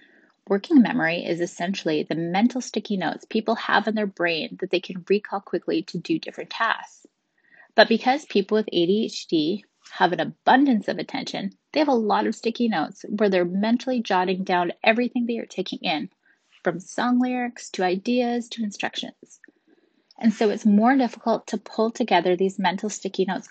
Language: English